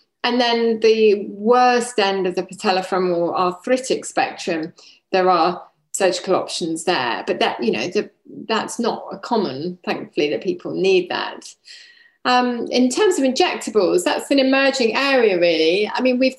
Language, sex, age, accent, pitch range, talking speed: English, female, 30-49, British, 195-270 Hz, 155 wpm